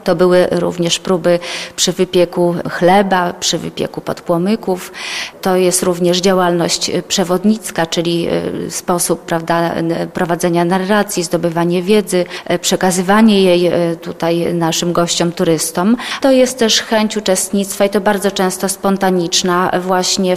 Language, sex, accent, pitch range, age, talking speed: Polish, female, native, 175-200 Hz, 30-49, 115 wpm